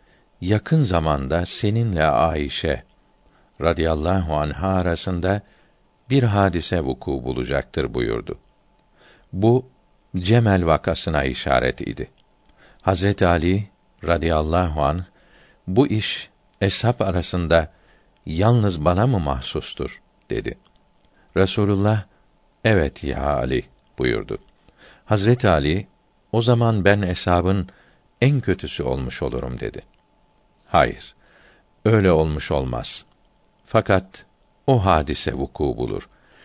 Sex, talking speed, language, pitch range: male, 90 wpm, Turkish, 80-105 Hz